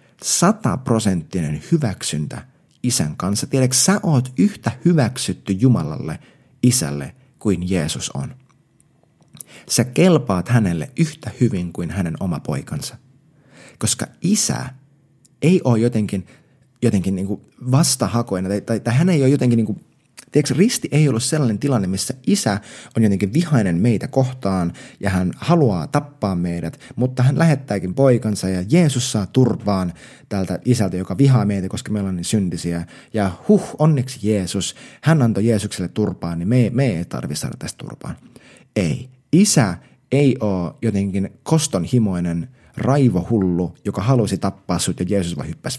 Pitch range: 95-135 Hz